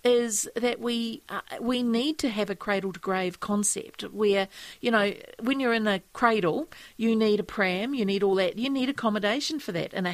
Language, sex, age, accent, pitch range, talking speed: English, female, 40-59, Australian, 190-230 Hz, 200 wpm